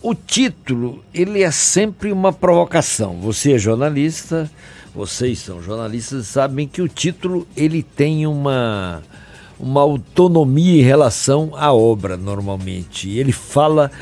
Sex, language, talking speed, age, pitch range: male, Portuguese, 120 wpm, 60-79, 115-165 Hz